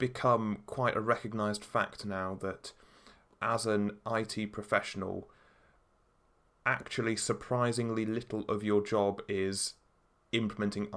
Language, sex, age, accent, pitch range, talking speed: English, male, 20-39, British, 100-110 Hz, 105 wpm